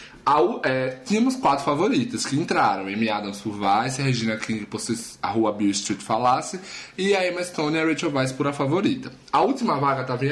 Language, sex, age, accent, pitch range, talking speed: Portuguese, male, 20-39, Brazilian, 120-170 Hz, 215 wpm